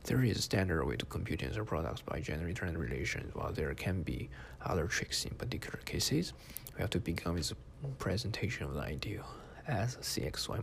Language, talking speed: English, 190 wpm